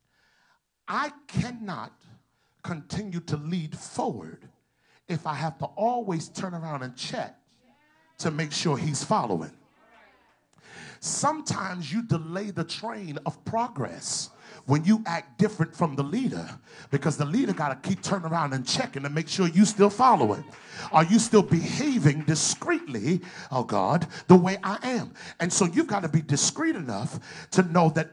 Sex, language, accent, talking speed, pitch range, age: male, English, American, 155 wpm, 165-225 Hz, 40-59